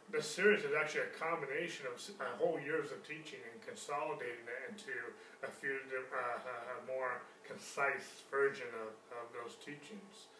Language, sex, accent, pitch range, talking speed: English, male, American, 140-230 Hz, 155 wpm